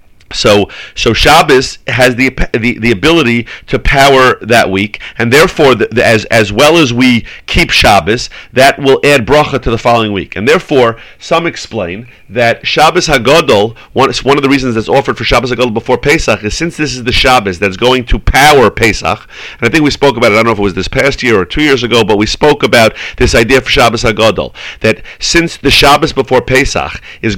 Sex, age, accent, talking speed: male, 40-59, American, 215 wpm